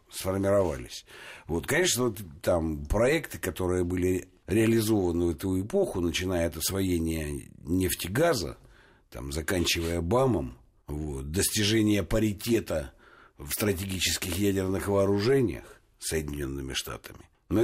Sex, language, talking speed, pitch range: male, Russian, 95 wpm, 85-115 Hz